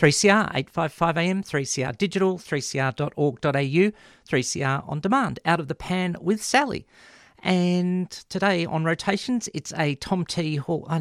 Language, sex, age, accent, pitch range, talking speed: English, male, 50-69, Australian, 135-180 Hz, 135 wpm